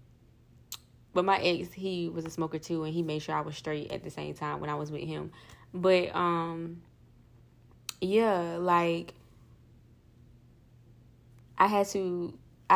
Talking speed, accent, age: 145 wpm, American, 20-39